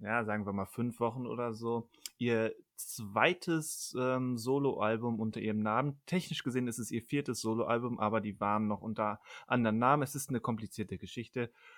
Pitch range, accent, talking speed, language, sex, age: 105-125 Hz, German, 175 wpm, German, male, 30-49